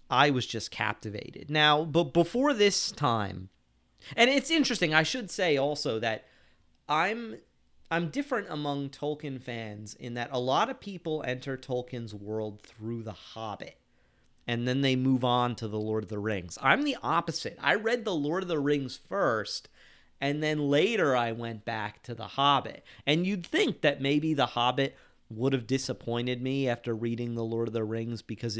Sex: male